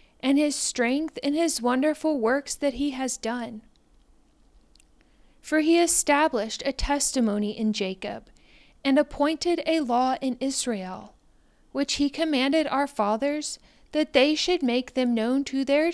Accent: American